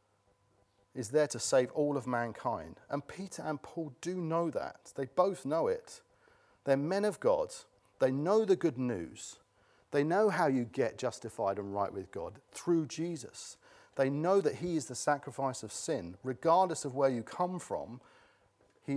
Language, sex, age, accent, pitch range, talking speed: English, male, 40-59, British, 115-165 Hz, 175 wpm